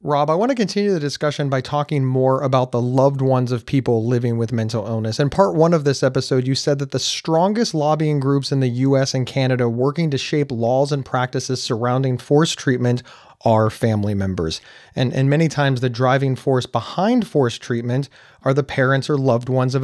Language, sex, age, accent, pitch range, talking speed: English, male, 30-49, American, 130-160 Hz, 205 wpm